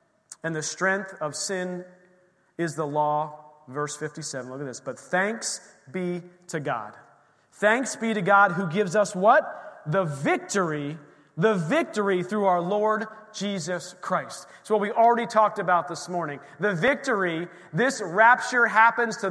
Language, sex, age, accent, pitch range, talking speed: English, male, 30-49, American, 155-200 Hz, 150 wpm